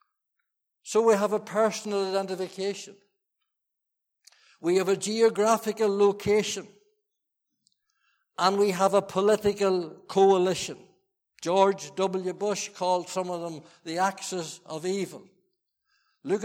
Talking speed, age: 105 wpm, 60-79